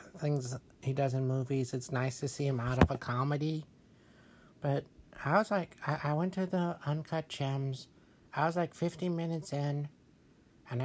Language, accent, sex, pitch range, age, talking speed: English, American, male, 125-165 Hz, 60-79, 175 wpm